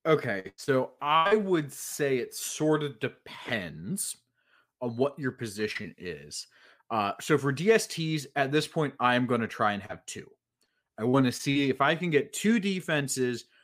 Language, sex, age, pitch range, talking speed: English, male, 30-49, 115-155 Hz, 170 wpm